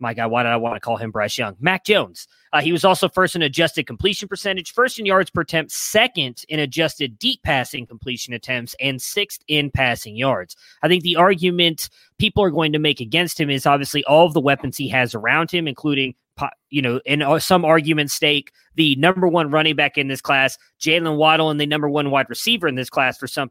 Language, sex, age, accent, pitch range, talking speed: English, male, 20-39, American, 135-180 Hz, 225 wpm